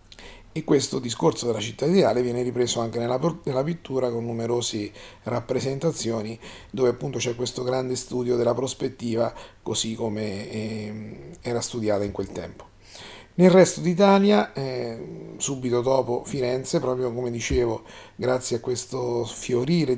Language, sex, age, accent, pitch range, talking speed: Italian, male, 40-59, native, 115-130 Hz, 135 wpm